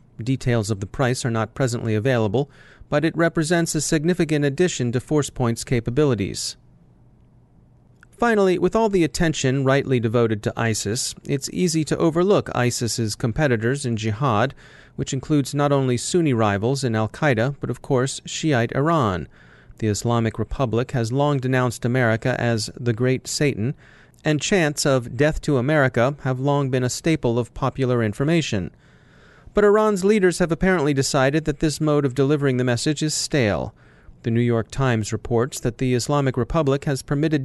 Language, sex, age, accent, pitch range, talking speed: English, male, 30-49, American, 120-150 Hz, 155 wpm